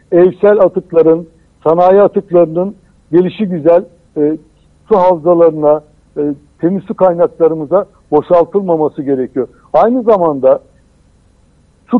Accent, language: native, Turkish